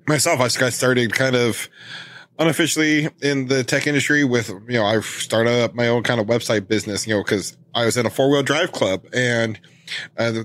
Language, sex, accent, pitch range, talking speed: English, male, American, 110-140 Hz, 200 wpm